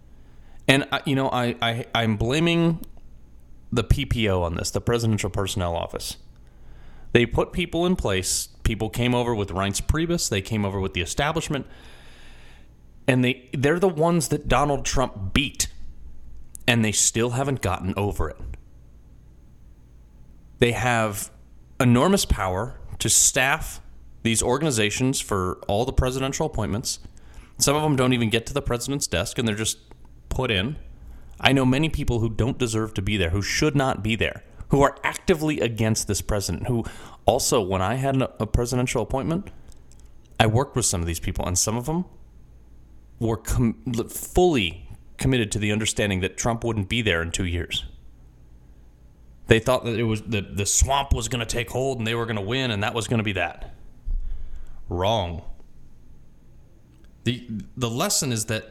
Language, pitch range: English, 85-125 Hz